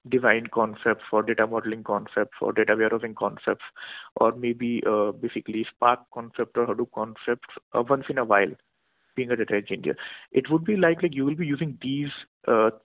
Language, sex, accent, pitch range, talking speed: English, male, Indian, 110-130 Hz, 175 wpm